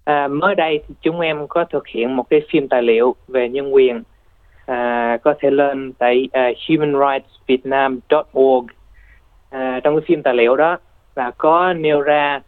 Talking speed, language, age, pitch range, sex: 170 wpm, Vietnamese, 20-39, 120-150 Hz, male